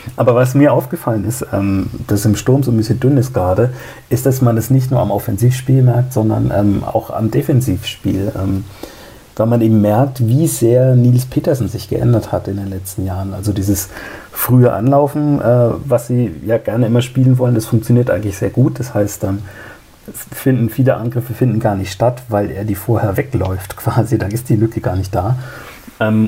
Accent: German